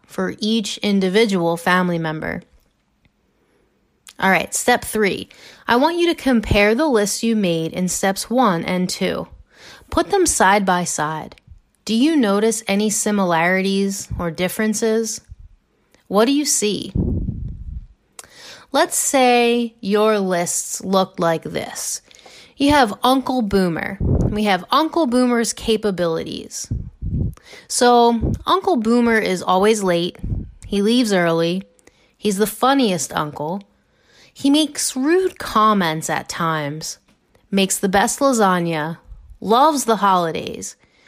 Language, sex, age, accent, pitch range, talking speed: English, female, 30-49, American, 180-245 Hz, 120 wpm